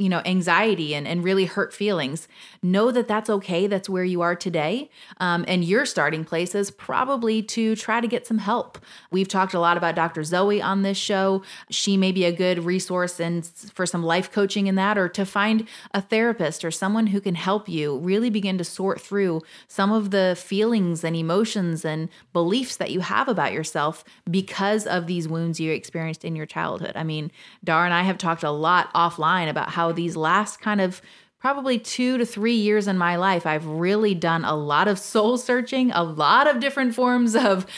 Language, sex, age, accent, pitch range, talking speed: English, female, 30-49, American, 170-215 Hz, 205 wpm